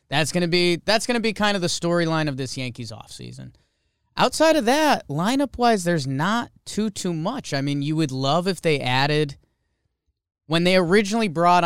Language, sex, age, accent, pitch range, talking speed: English, male, 20-39, American, 120-165 Hz, 185 wpm